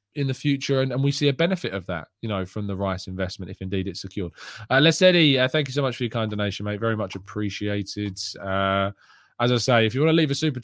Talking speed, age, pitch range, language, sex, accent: 270 wpm, 20-39, 105-140 Hz, English, male, British